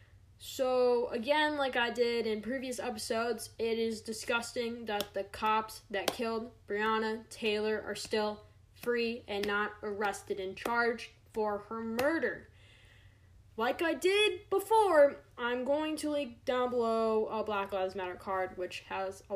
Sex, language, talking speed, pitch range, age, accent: female, English, 145 wpm, 185-235 Hz, 10-29, American